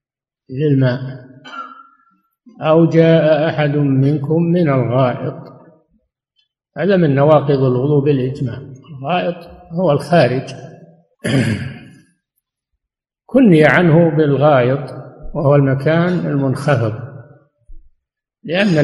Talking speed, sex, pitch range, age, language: 70 wpm, male, 130-160 Hz, 60-79, Arabic